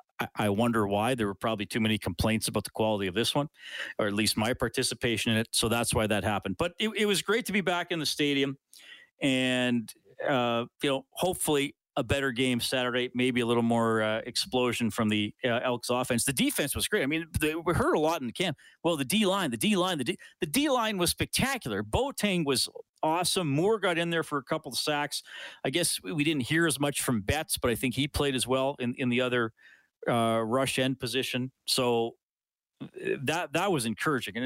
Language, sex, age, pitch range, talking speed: English, male, 40-59, 110-155 Hz, 220 wpm